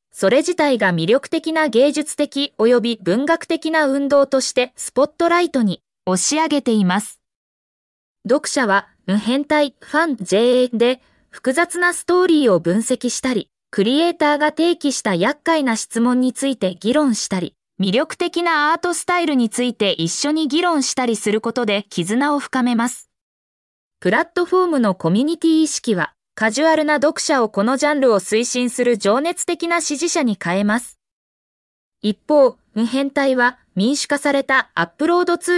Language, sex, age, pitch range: Japanese, female, 20-39, 225-315 Hz